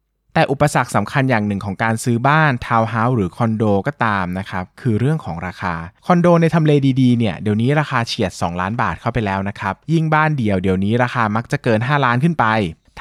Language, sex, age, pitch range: Thai, male, 20-39, 100-135 Hz